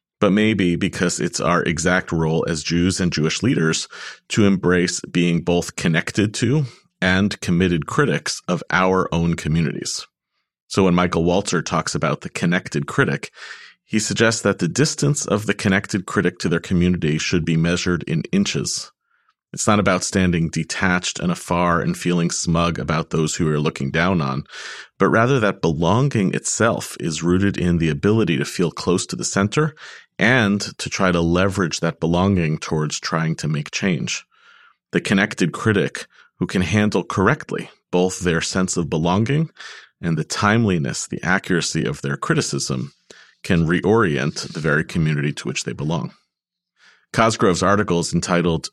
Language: English